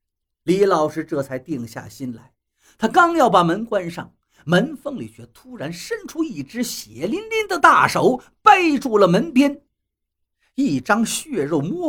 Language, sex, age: Chinese, male, 50-69